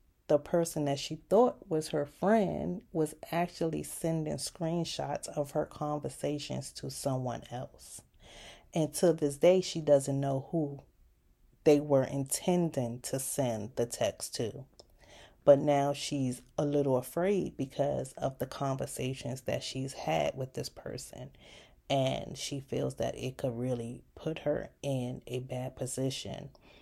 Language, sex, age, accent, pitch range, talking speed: English, female, 30-49, American, 125-165 Hz, 140 wpm